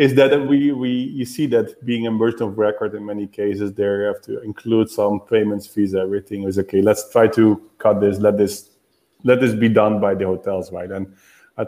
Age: 30-49